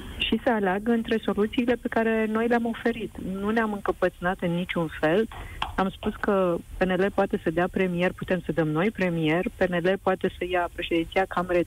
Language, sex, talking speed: Romanian, female, 180 wpm